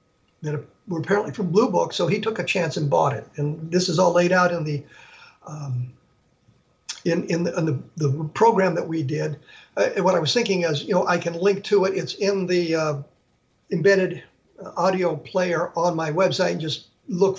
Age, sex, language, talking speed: 50-69, male, English, 205 wpm